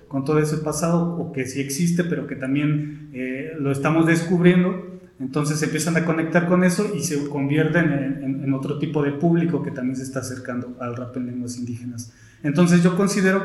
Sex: male